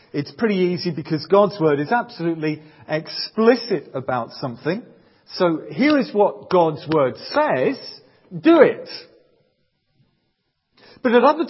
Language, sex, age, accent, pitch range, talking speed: English, male, 40-59, British, 140-195 Hz, 120 wpm